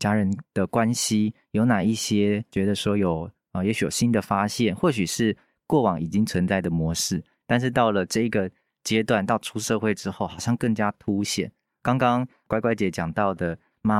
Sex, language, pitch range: male, Chinese, 95-120 Hz